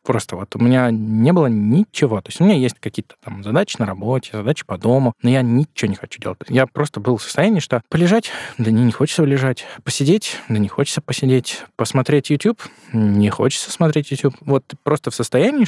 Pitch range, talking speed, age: 115-150 Hz, 205 wpm, 20-39